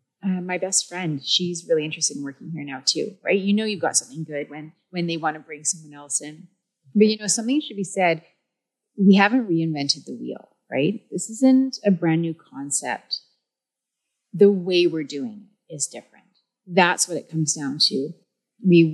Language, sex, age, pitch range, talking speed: English, female, 30-49, 155-200 Hz, 195 wpm